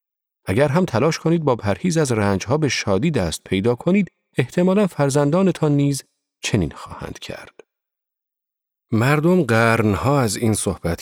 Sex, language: male, Persian